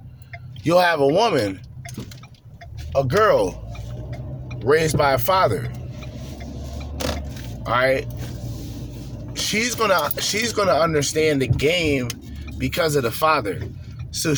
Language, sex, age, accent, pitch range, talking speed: English, male, 30-49, American, 110-150 Hz, 100 wpm